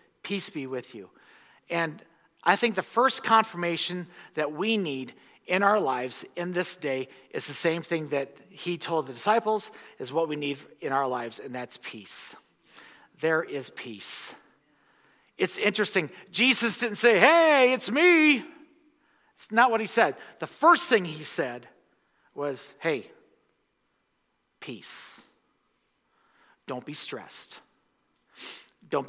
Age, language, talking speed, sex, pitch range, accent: 50-69, English, 135 wpm, male, 160-260 Hz, American